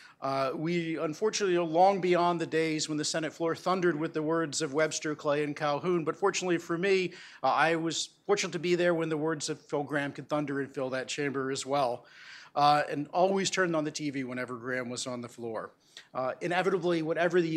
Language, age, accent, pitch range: English, 40-59, American, 145-175 Hz